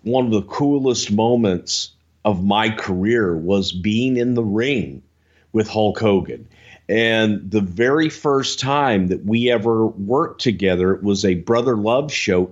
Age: 50-69